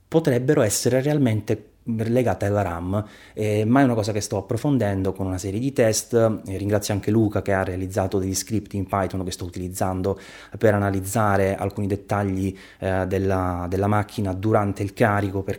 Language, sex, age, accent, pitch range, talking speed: Italian, male, 20-39, native, 95-110 Hz, 170 wpm